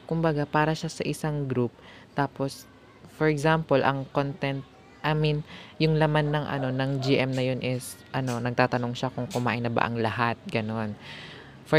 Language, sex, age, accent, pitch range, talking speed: Filipino, female, 20-39, native, 120-145 Hz, 170 wpm